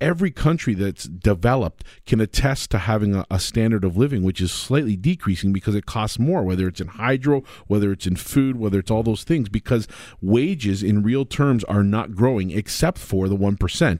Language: English